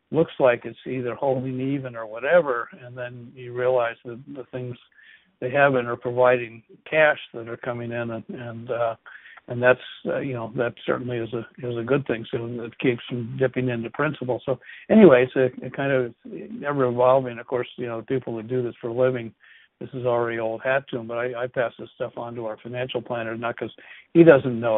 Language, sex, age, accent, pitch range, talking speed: English, male, 60-79, American, 115-130 Hz, 220 wpm